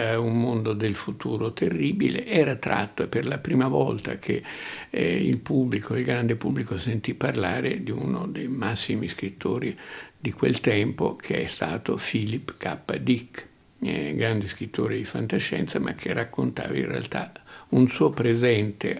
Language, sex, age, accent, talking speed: Italian, male, 60-79, native, 150 wpm